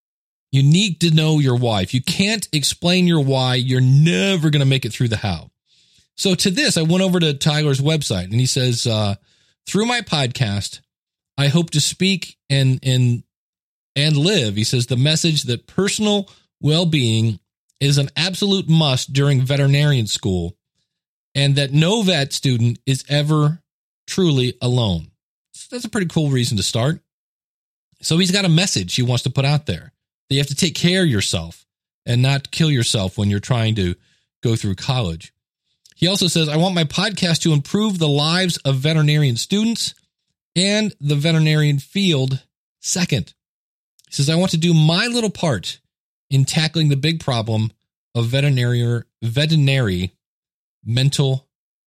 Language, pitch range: English, 120-165 Hz